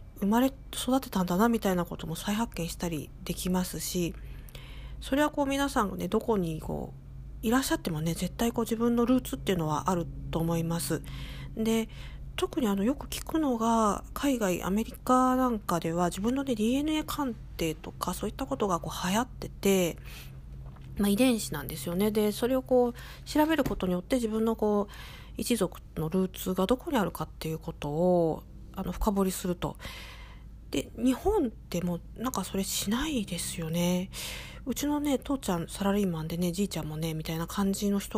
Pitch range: 165-235 Hz